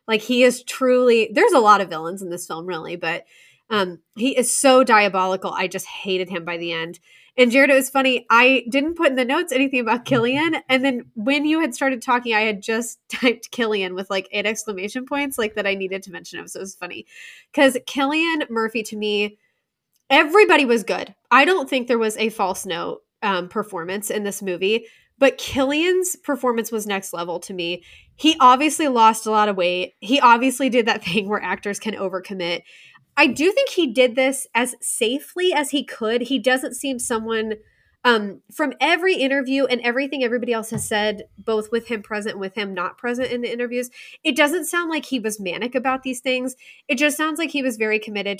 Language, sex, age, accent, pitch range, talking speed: English, female, 20-39, American, 205-270 Hz, 210 wpm